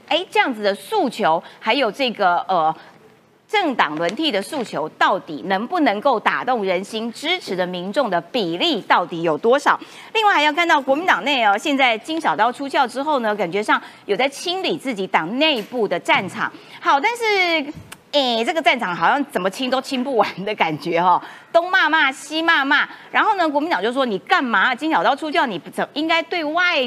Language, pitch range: Chinese, 220-335 Hz